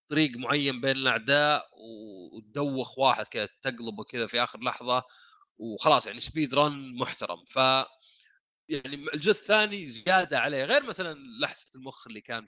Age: 30-49